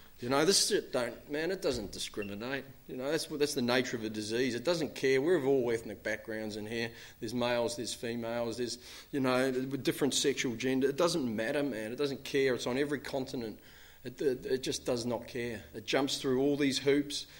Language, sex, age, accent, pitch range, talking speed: English, male, 40-59, Australian, 115-140 Hz, 215 wpm